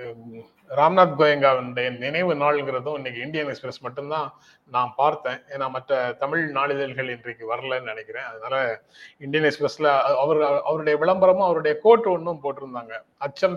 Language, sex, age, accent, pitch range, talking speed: Tamil, male, 30-49, native, 135-180 Hz, 120 wpm